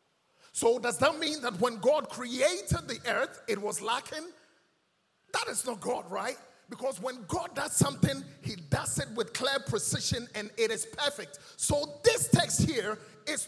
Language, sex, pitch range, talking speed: English, male, 215-295 Hz, 170 wpm